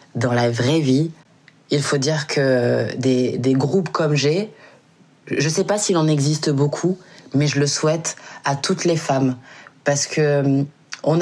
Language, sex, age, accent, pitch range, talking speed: French, female, 20-39, French, 145-170 Hz, 165 wpm